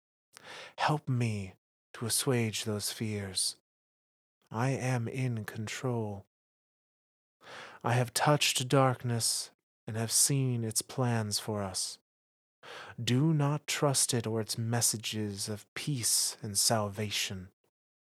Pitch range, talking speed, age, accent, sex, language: 105-125 Hz, 105 wpm, 30-49, American, male, English